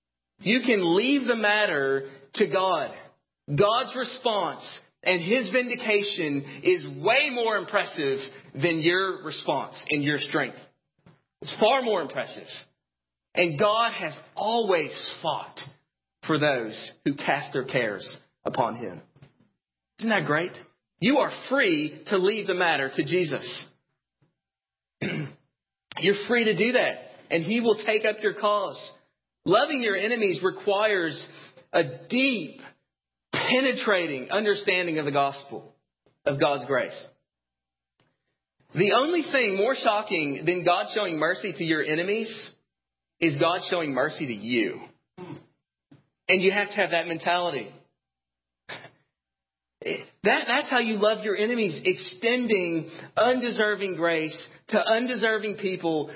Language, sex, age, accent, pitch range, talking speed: English, male, 40-59, American, 155-215 Hz, 125 wpm